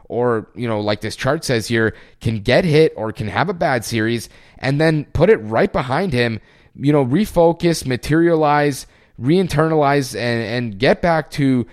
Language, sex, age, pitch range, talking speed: English, male, 30-49, 115-155 Hz, 170 wpm